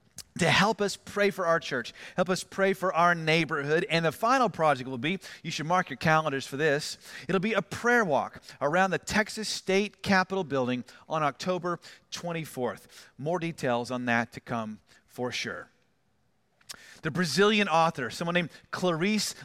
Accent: American